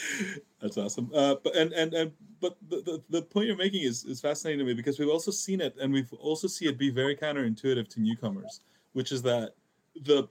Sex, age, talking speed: male, 30-49, 220 wpm